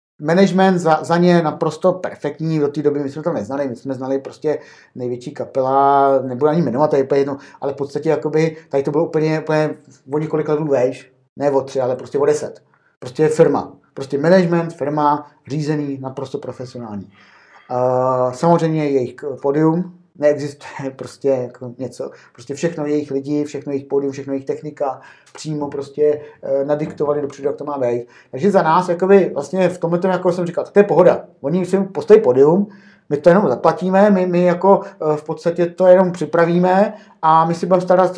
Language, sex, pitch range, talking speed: Czech, male, 140-175 Hz, 175 wpm